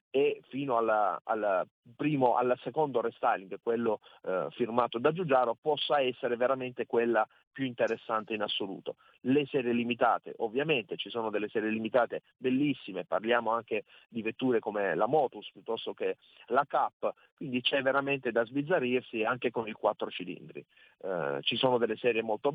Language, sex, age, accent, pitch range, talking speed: Italian, male, 40-59, native, 120-140 Hz, 150 wpm